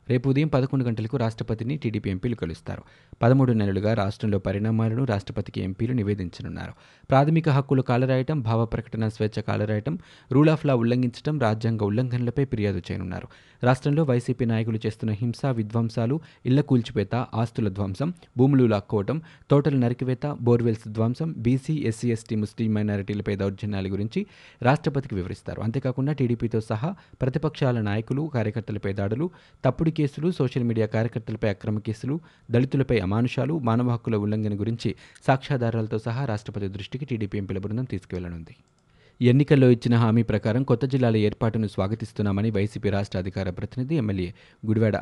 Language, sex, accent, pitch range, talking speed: Telugu, male, native, 105-130 Hz, 130 wpm